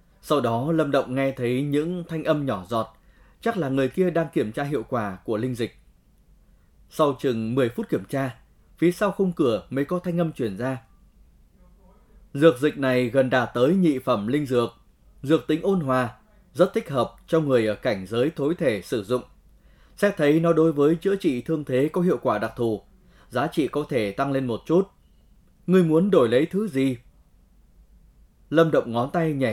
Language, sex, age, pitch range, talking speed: Vietnamese, male, 20-39, 120-165 Hz, 200 wpm